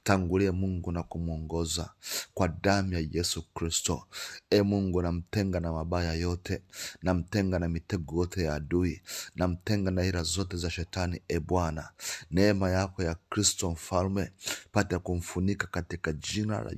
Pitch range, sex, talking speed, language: 85-100 Hz, male, 145 wpm, Swahili